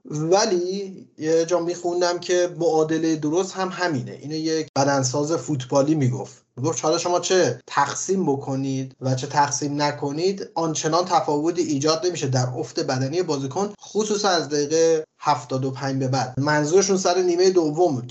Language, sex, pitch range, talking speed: Persian, male, 140-180 Hz, 150 wpm